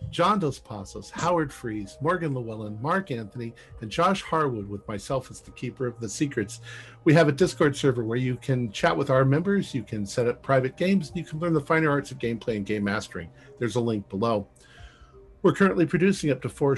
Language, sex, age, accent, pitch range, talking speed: English, male, 50-69, American, 105-145 Hz, 215 wpm